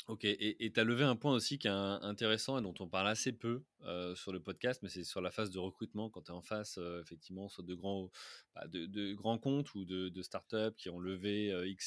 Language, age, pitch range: French, 20-39, 95-115 Hz